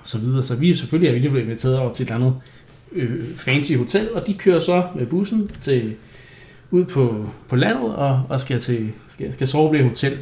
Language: Danish